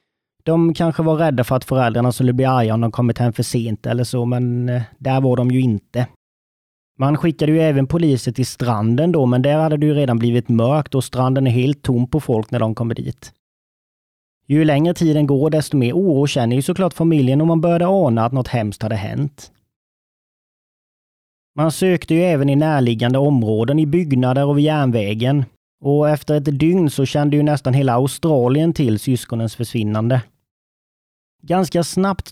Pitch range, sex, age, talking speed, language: 120-150 Hz, male, 30-49, 180 wpm, English